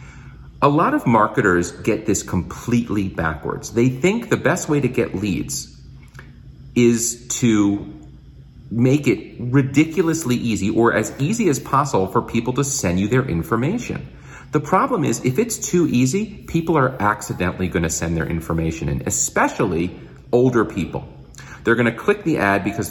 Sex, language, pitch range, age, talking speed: male, English, 85-120 Hz, 40-59, 155 wpm